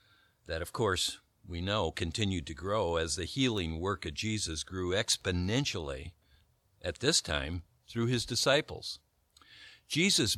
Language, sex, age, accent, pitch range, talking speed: English, male, 50-69, American, 85-110 Hz, 135 wpm